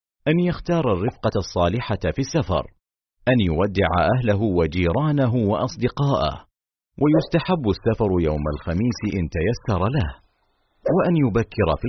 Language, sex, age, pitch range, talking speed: Arabic, male, 50-69, 85-125 Hz, 105 wpm